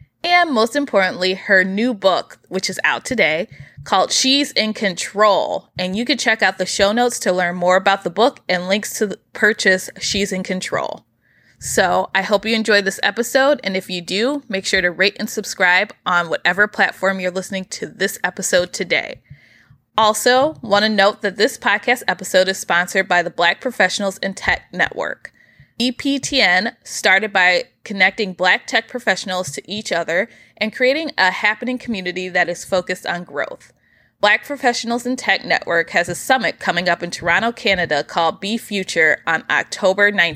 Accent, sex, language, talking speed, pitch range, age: American, female, English, 175 wpm, 185-225 Hz, 20-39